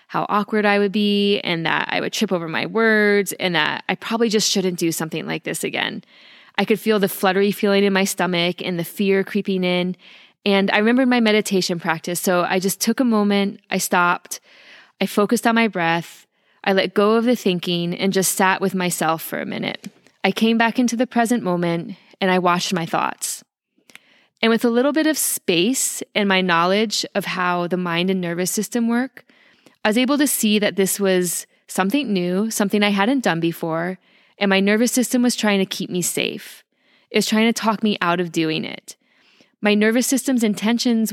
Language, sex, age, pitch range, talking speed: English, female, 20-39, 180-225 Hz, 205 wpm